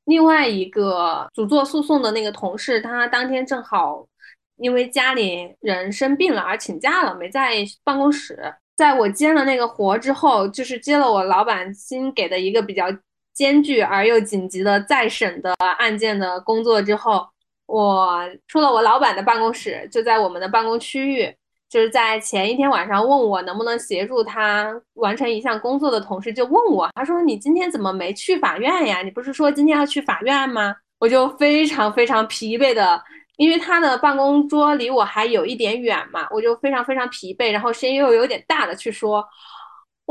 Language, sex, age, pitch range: Chinese, female, 20-39, 210-285 Hz